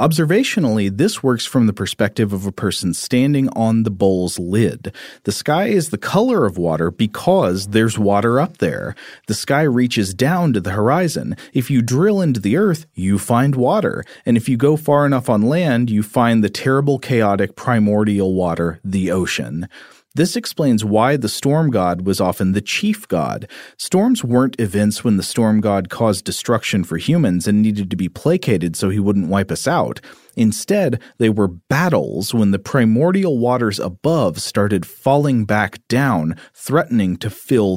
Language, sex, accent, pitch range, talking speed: English, male, American, 100-130 Hz, 170 wpm